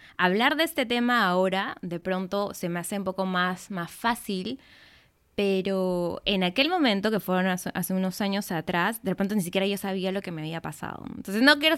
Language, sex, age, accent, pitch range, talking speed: Spanish, female, 20-39, Argentinian, 180-225 Hz, 205 wpm